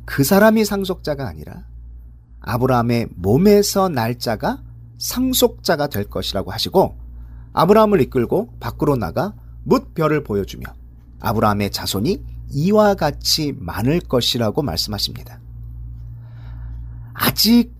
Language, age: Korean, 40-59